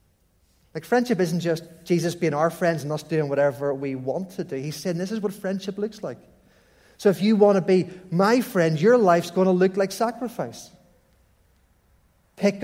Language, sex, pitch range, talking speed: English, male, 155-195 Hz, 190 wpm